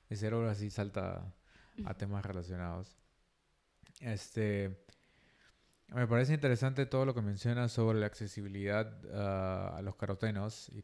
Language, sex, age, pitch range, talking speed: Spanish, male, 20-39, 100-120 Hz, 125 wpm